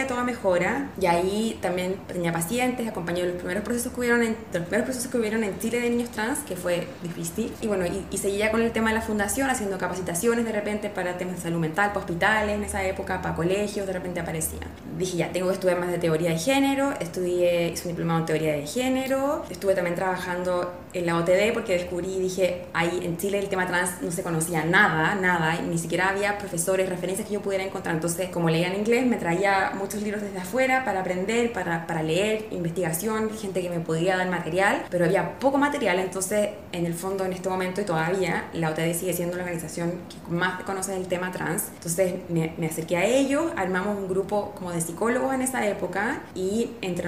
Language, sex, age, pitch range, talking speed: Spanish, female, 20-39, 175-215 Hz, 210 wpm